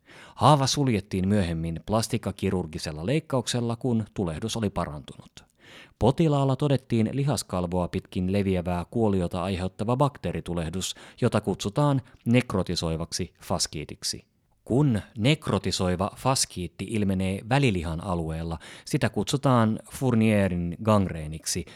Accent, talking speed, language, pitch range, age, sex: native, 85 wpm, Finnish, 90-130 Hz, 30-49, male